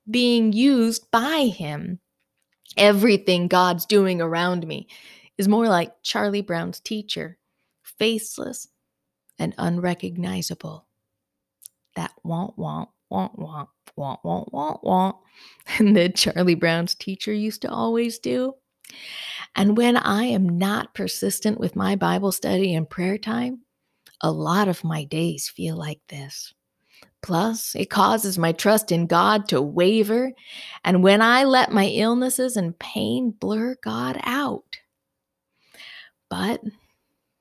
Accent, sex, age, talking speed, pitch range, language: American, female, 20-39, 125 wpm, 175-230 Hz, English